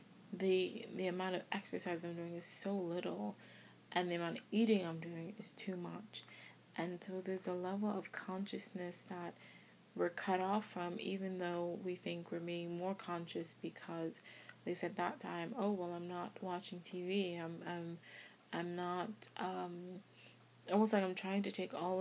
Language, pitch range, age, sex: English, 175-190 Hz, 20-39, female